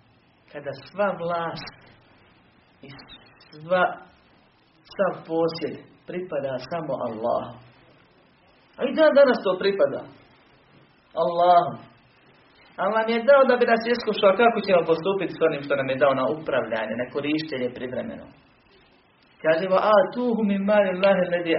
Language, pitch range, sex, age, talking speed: Croatian, 140-215 Hz, male, 40-59, 130 wpm